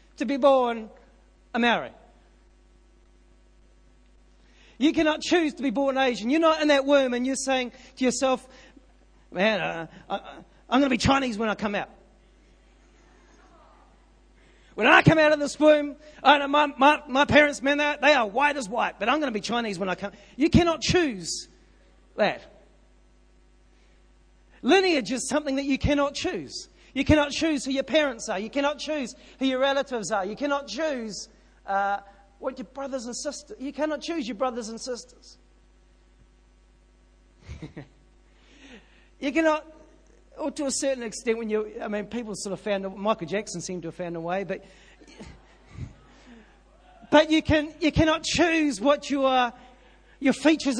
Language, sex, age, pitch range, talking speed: English, male, 40-59, 215-295 Hz, 165 wpm